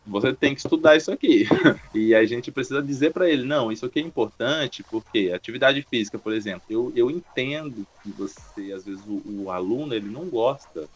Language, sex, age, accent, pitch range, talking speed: Portuguese, male, 20-39, Brazilian, 100-145 Hz, 195 wpm